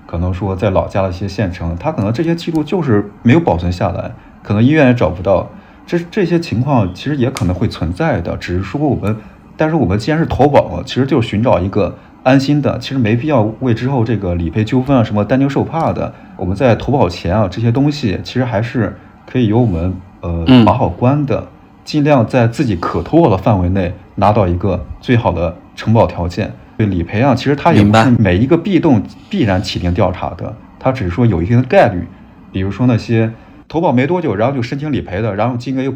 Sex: male